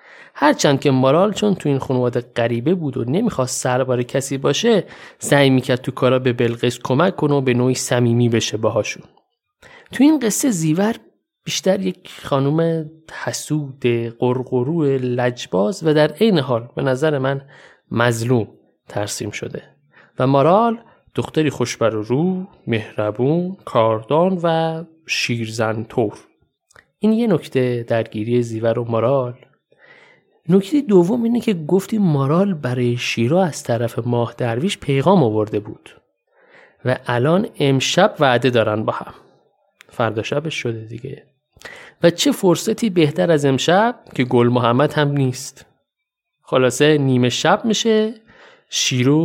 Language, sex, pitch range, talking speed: Persian, male, 120-175 Hz, 130 wpm